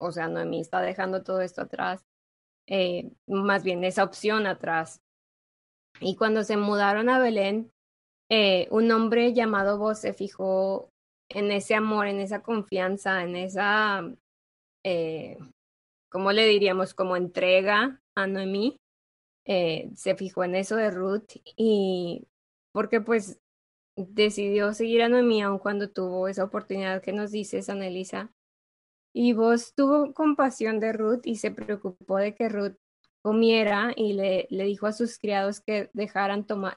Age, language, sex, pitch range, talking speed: 20-39, Spanish, female, 190-220 Hz, 145 wpm